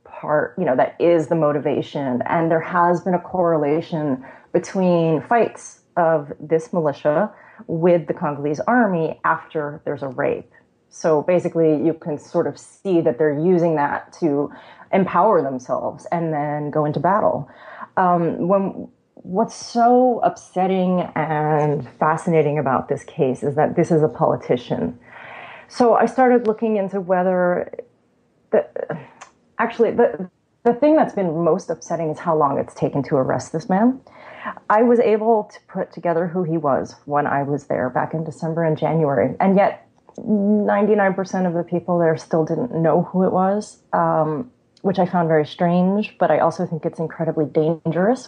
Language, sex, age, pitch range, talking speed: English, female, 30-49, 155-190 Hz, 160 wpm